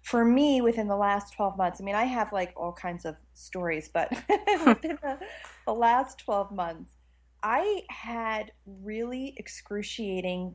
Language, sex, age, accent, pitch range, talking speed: English, female, 30-49, American, 175-225 Hz, 155 wpm